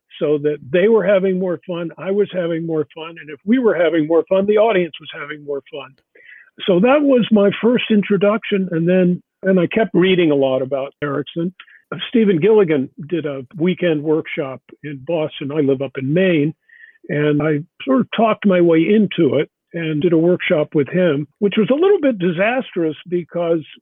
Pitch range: 160-205 Hz